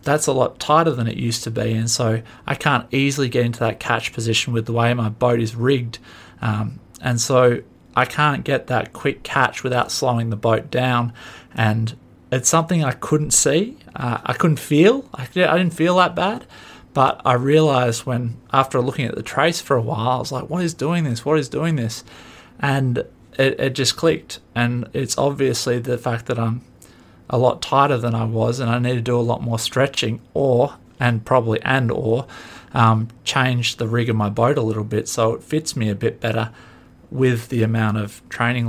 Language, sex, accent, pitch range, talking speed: English, male, Australian, 115-140 Hz, 205 wpm